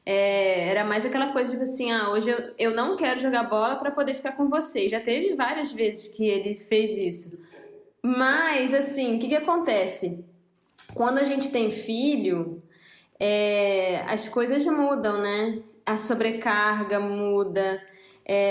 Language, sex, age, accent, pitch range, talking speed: Portuguese, female, 20-39, Brazilian, 200-260 Hz, 145 wpm